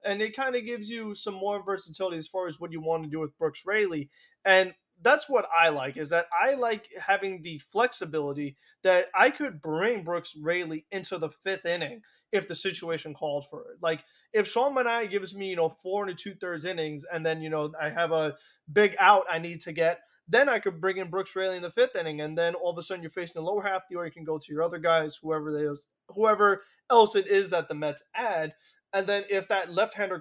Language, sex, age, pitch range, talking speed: English, male, 20-39, 160-200 Hz, 235 wpm